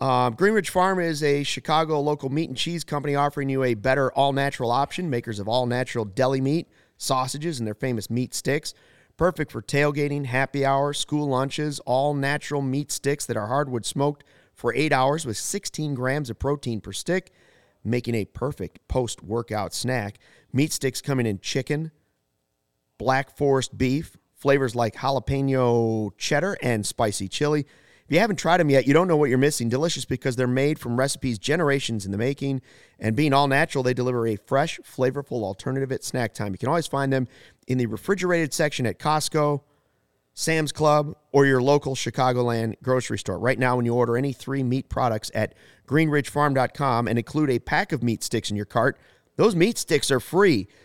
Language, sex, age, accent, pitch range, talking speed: English, male, 30-49, American, 120-150 Hz, 180 wpm